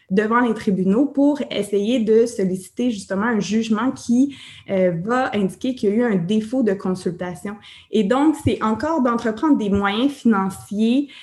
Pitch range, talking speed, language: 185-225 Hz, 160 wpm, French